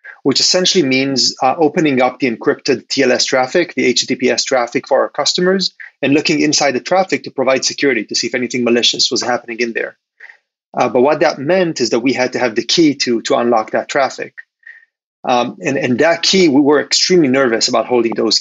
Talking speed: 205 wpm